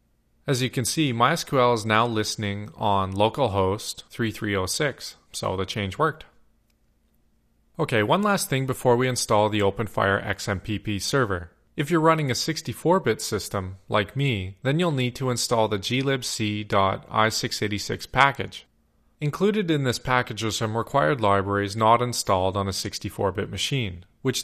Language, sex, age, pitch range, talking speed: English, male, 30-49, 100-130 Hz, 140 wpm